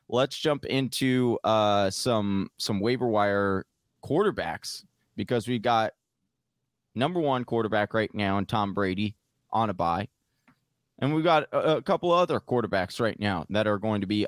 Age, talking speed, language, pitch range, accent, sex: 20-39, 160 wpm, English, 105-125 Hz, American, male